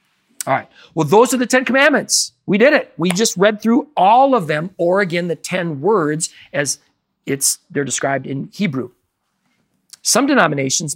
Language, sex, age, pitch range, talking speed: English, male, 40-59, 130-185 Hz, 170 wpm